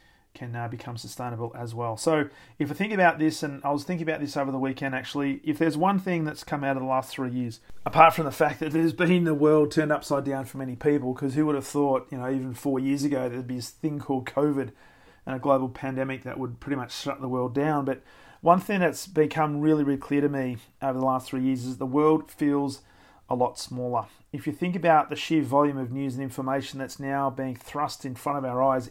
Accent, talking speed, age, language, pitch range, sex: Australian, 250 wpm, 40-59, English, 130-155 Hz, male